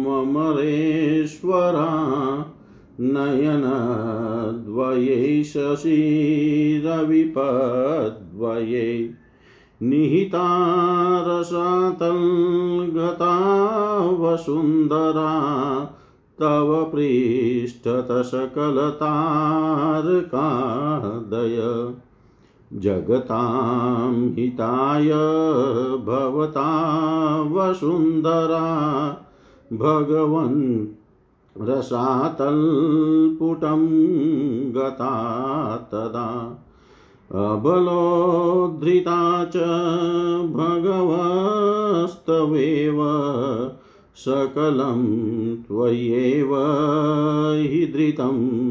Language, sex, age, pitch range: Hindi, male, 50-69, 125-160 Hz